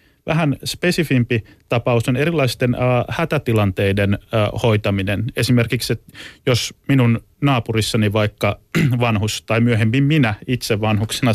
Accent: native